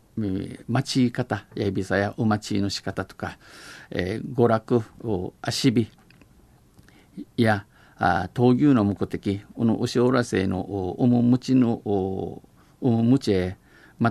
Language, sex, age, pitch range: Japanese, male, 50-69, 100-125 Hz